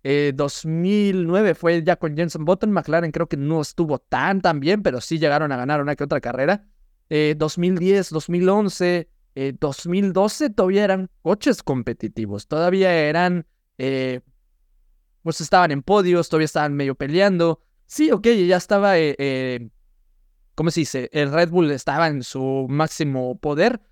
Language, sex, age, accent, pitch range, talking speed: Spanish, male, 20-39, Mexican, 145-200 Hz, 155 wpm